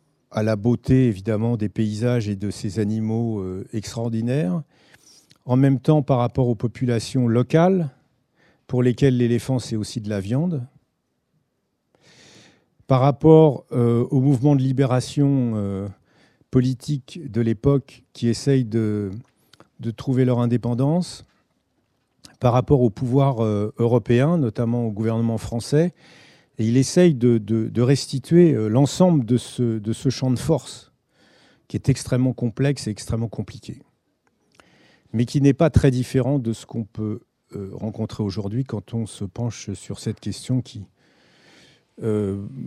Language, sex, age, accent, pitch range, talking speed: French, male, 50-69, French, 110-135 Hz, 140 wpm